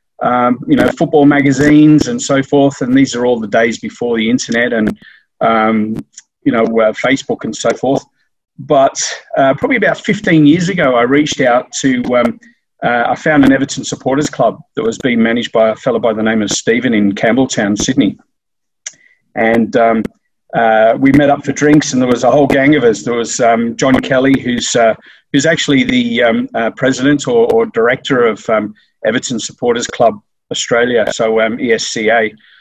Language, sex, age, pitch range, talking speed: English, male, 40-59, 120-150 Hz, 185 wpm